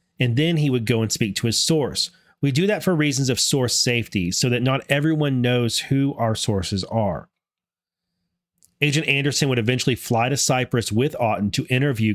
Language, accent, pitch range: English, American, 115-145 Hz